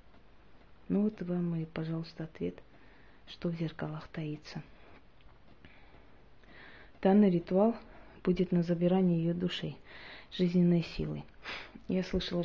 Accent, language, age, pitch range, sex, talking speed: native, Russian, 30-49, 160-185 Hz, female, 100 wpm